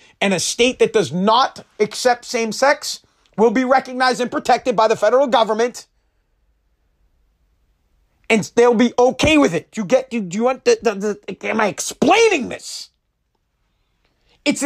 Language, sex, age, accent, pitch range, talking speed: English, male, 40-59, American, 220-290 Hz, 155 wpm